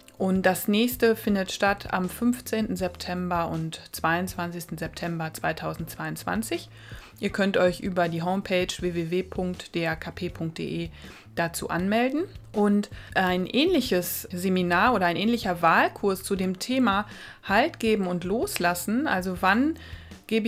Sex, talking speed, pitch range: female, 115 wpm, 180-225 Hz